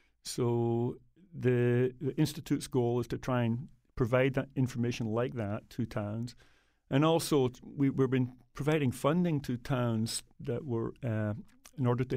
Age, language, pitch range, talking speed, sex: 50-69, English, 110-130 Hz, 160 wpm, male